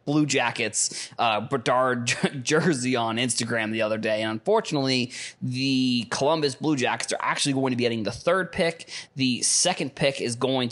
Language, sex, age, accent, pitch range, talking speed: English, male, 20-39, American, 115-135 Hz, 170 wpm